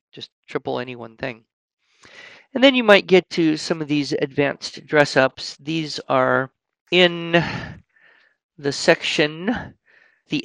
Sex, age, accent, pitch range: male, 50-69, American, 125-160 Hz